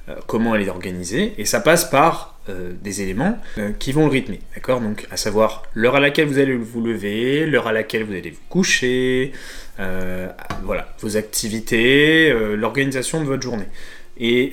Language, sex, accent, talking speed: French, male, French, 180 wpm